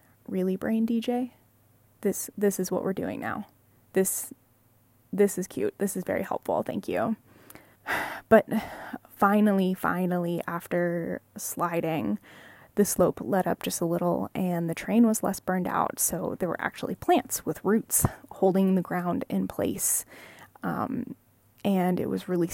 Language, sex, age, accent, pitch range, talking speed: English, female, 20-39, American, 175-210 Hz, 150 wpm